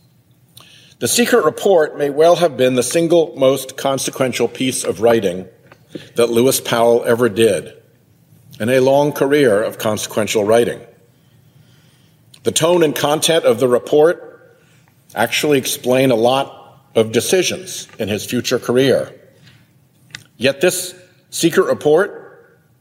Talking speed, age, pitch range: 125 wpm, 50-69, 125-155 Hz